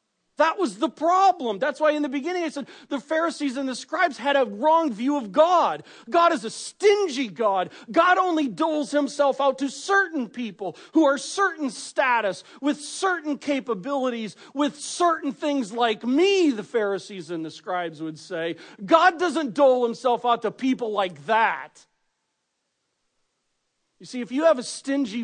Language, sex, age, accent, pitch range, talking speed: English, male, 40-59, American, 195-285 Hz, 165 wpm